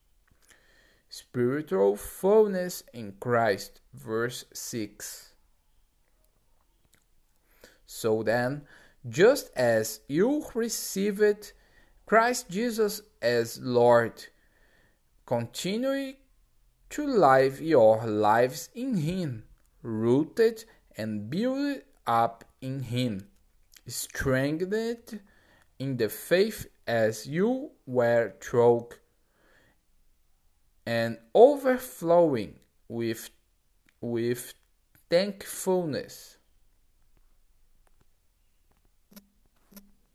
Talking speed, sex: 65 wpm, male